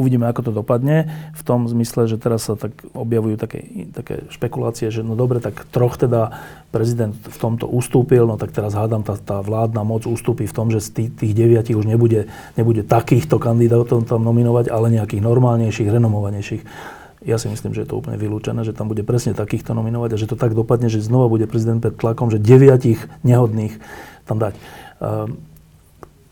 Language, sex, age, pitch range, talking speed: Slovak, male, 40-59, 110-125 Hz, 185 wpm